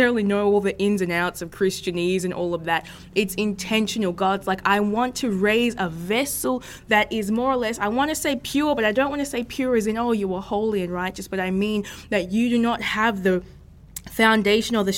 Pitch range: 185-225 Hz